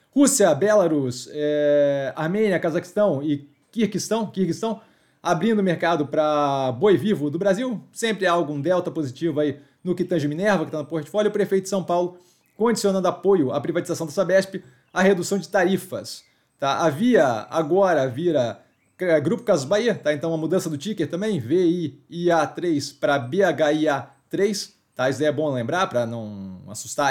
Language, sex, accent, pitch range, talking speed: Portuguese, male, Brazilian, 150-190 Hz, 150 wpm